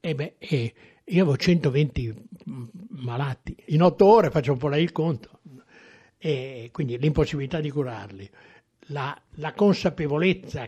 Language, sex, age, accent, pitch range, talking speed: Italian, male, 60-79, native, 130-185 Hz, 140 wpm